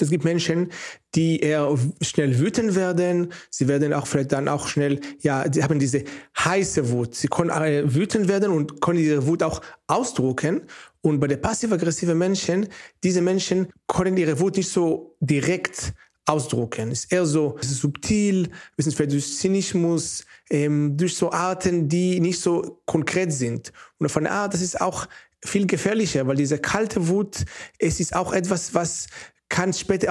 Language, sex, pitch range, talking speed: German, male, 150-185 Hz, 165 wpm